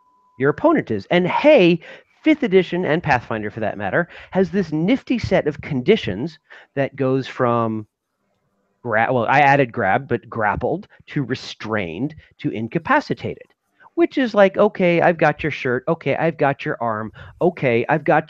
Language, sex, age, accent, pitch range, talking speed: English, male, 40-59, American, 115-170 Hz, 155 wpm